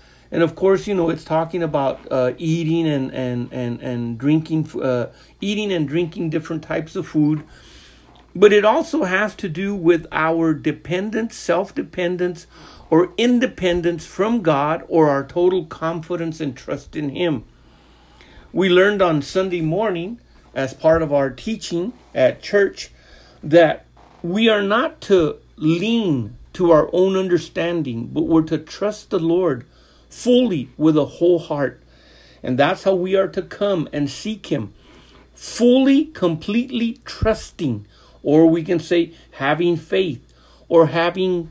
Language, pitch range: English, 150-185 Hz